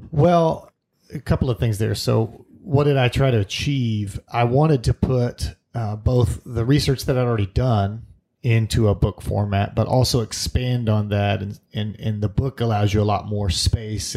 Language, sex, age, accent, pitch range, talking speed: English, male, 30-49, American, 100-120 Hz, 190 wpm